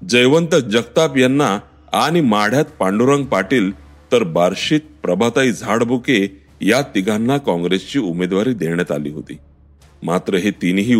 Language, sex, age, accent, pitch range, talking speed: Marathi, male, 40-59, native, 90-135 Hz, 115 wpm